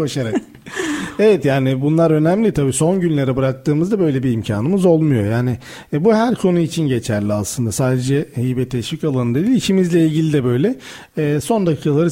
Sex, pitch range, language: male, 135-175 Hz, Turkish